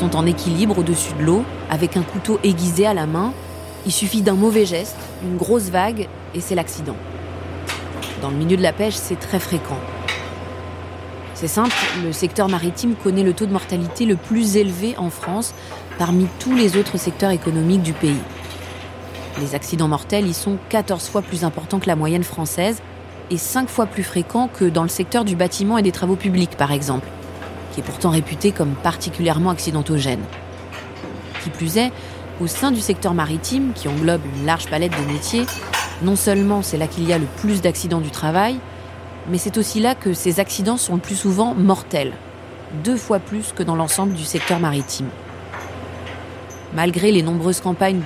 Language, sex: French, female